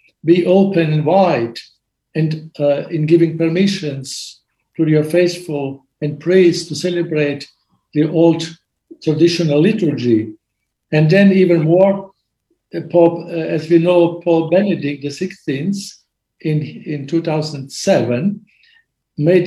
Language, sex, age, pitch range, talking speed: English, male, 60-79, 150-180 Hz, 115 wpm